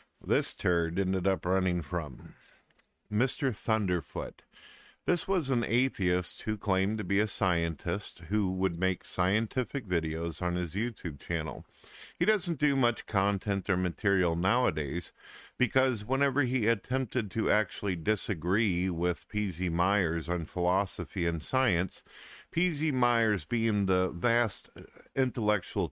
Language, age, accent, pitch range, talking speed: English, 50-69, American, 90-115 Hz, 125 wpm